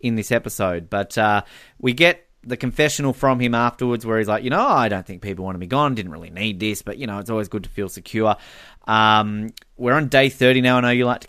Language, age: English, 20-39